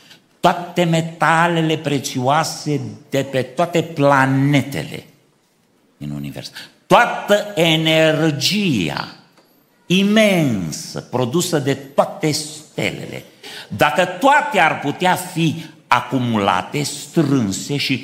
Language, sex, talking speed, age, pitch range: Romanian, male, 80 wpm, 50-69, 105-175 Hz